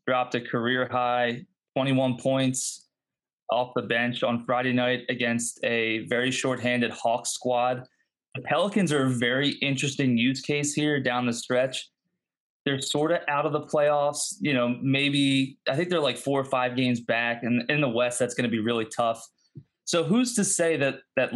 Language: English